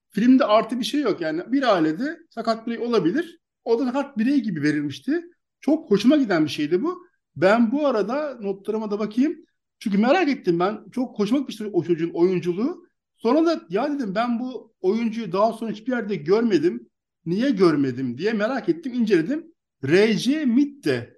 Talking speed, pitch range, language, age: 175 wpm, 180-275 Hz, Turkish, 50-69